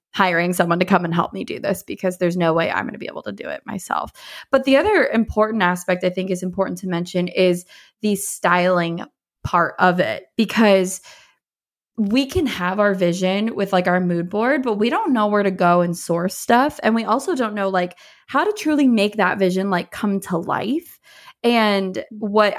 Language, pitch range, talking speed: English, 180-220 Hz, 205 wpm